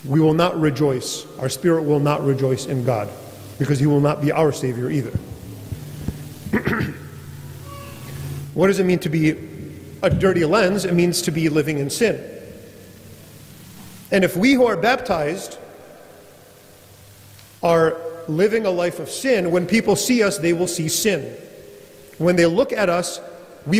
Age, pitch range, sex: 40-59, 145-185 Hz, male